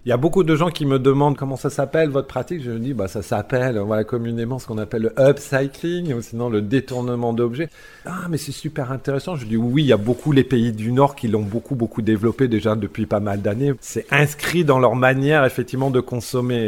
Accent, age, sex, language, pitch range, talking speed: French, 40-59, male, French, 115-145 Hz, 235 wpm